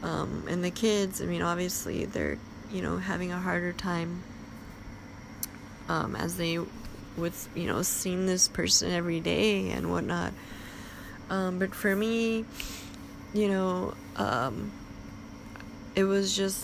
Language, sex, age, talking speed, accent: English, female, 20-39, 135 wpm, American